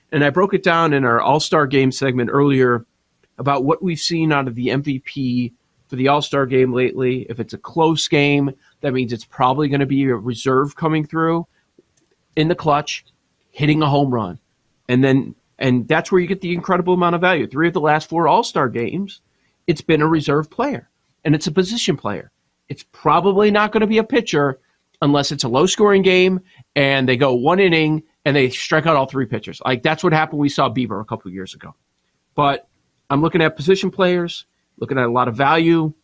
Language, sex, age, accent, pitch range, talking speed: English, male, 40-59, American, 130-165 Hz, 210 wpm